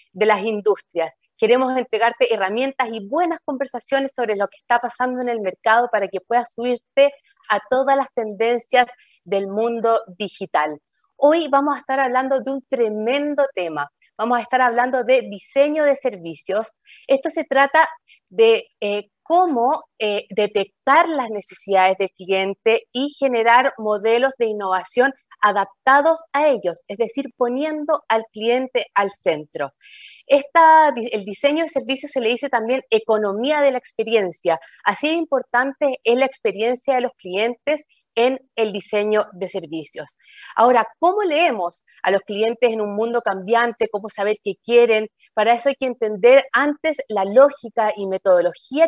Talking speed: 150 wpm